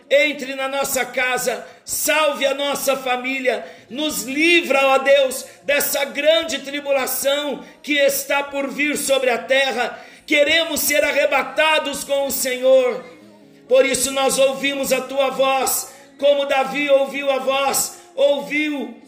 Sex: male